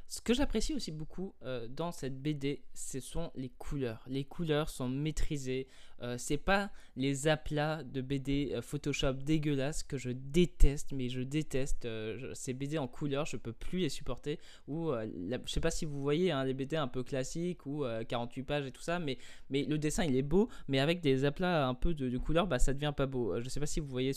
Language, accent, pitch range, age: French, French, 130-155 Hz, 20-39